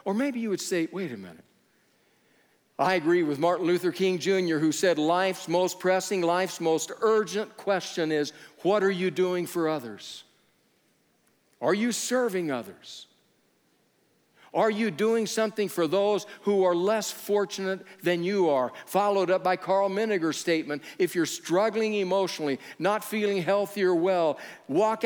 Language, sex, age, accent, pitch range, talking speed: English, male, 60-79, American, 155-205 Hz, 155 wpm